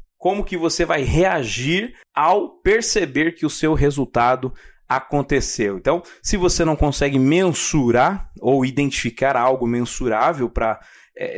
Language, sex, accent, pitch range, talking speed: Portuguese, male, Brazilian, 130-170 Hz, 125 wpm